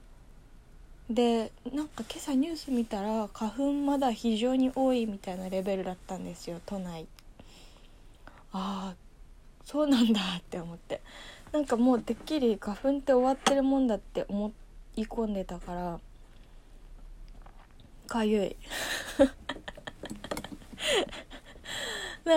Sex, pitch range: female, 200-275 Hz